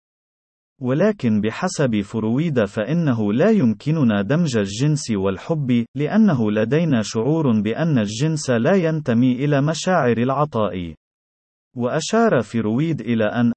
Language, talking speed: Arabic, 100 wpm